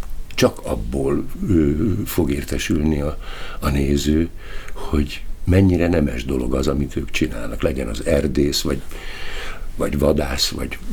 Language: Hungarian